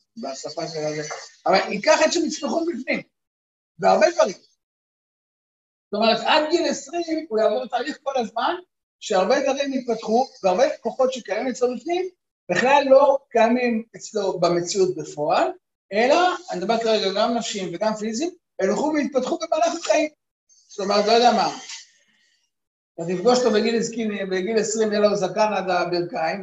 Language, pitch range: Hebrew, 195-290 Hz